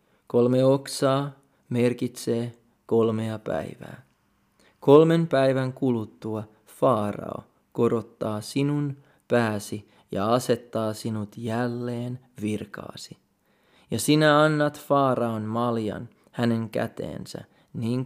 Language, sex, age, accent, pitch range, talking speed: Finnish, male, 30-49, native, 110-130 Hz, 85 wpm